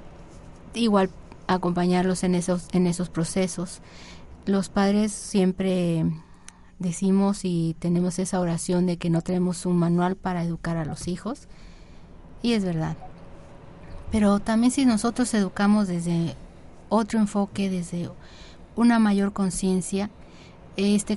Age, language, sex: 30-49, Spanish, female